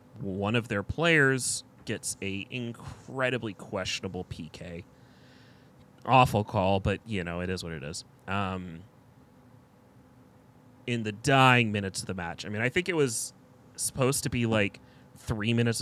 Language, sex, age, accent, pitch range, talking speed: English, male, 30-49, American, 95-125 Hz, 150 wpm